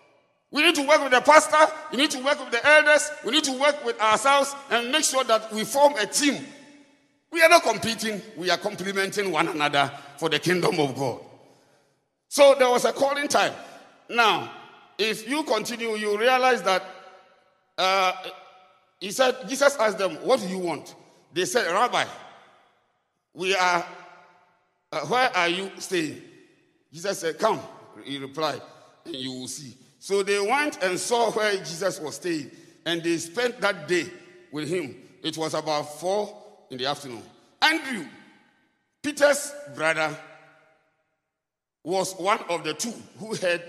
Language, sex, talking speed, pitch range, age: English, male, 160 wpm, 170-275 Hz, 50-69